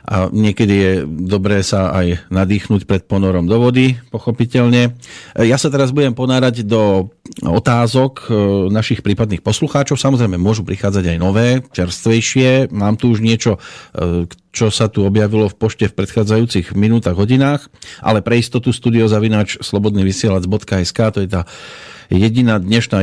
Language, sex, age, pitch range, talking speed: Slovak, male, 40-59, 100-125 Hz, 135 wpm